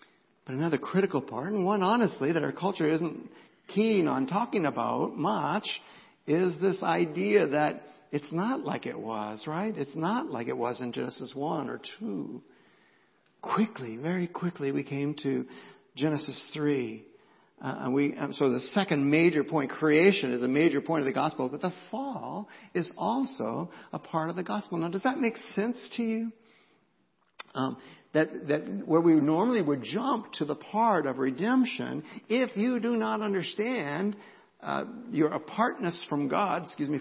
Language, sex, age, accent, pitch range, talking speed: English, male, 60-79, American, 155-210 Hz, 165 wpm